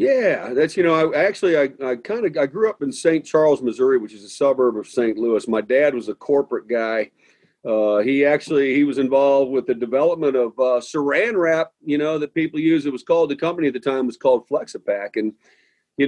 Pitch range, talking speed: 110-145 Hz, 230 wpm